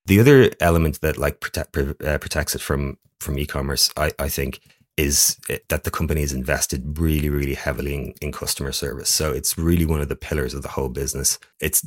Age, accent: 30-49, Irish